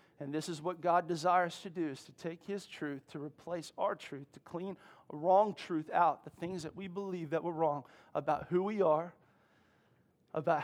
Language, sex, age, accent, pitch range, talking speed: English, male, 40-59, American, 155-200 Hz, 195 wpm